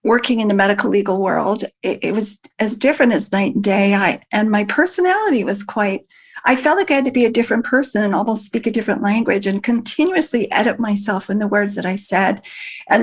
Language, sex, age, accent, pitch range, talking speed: English, female, 40-59, American, 205-255 Hz, 210 wpm